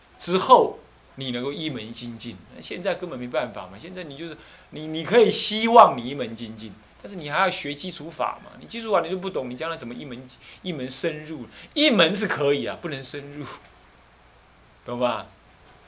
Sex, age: male, 30-49